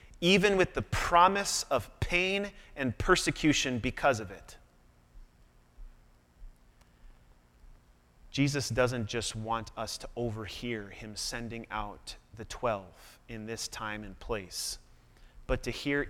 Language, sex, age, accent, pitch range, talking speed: English, male, 30-49, American, 115-175 Hz, 115 wpm